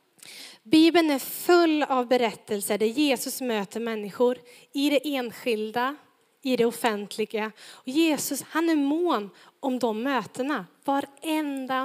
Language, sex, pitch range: Swedish, female, 235-290 Hz